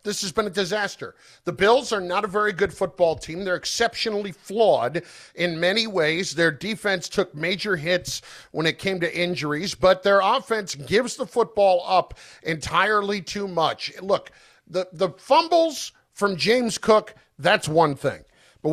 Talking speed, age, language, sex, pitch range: 165 wpm, 50-69, English, male, 180-255 Hz